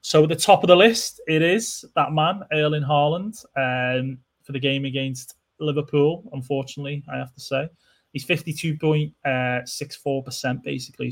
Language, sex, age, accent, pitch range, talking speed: English, male, 20-39, British, 125-155 Hz, 150 wpm